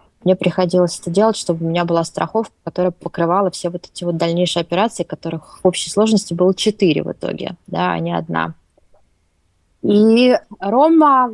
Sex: female